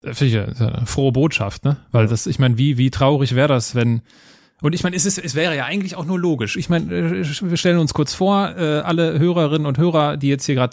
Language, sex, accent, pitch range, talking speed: German, male, German, 130-160 Hz, 240 wpm